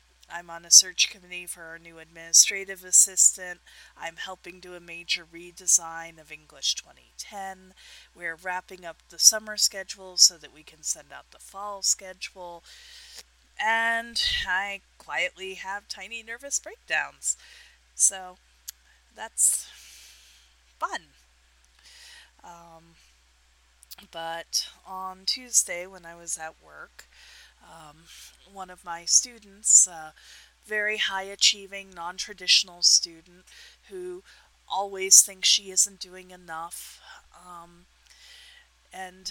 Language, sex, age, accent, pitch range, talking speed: English, female, 30-49, American, 165-195 Hz, 110 wpm